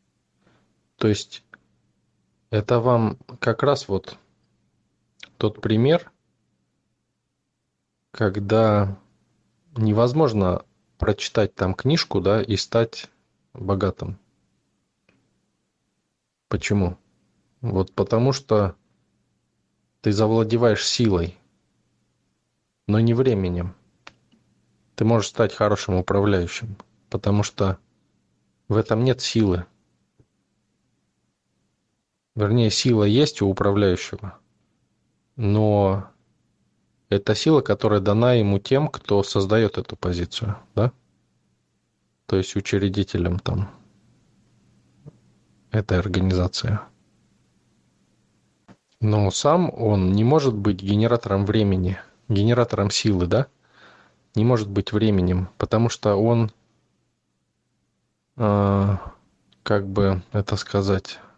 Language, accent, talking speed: Russian, native, 80 wpm